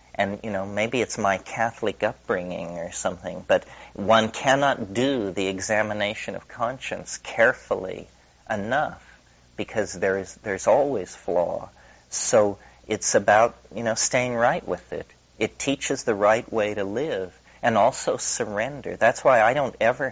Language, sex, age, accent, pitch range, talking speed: English, male, 40-59, American, 90-105 Hz, 150 wpm